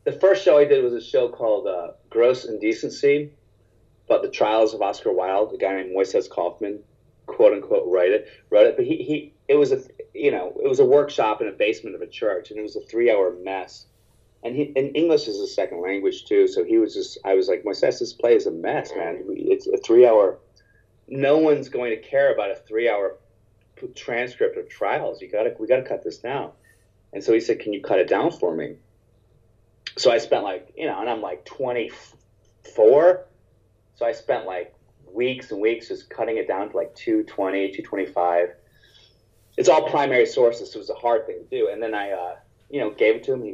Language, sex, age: English, male, 30-49